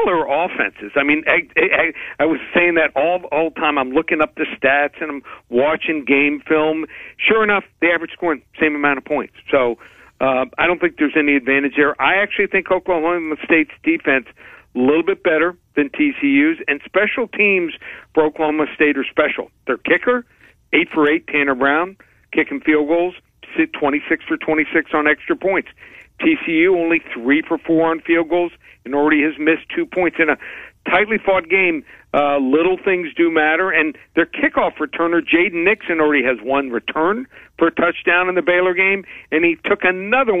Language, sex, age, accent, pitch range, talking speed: English, male, 50-69, American, 145-180 Hz, 185 wpm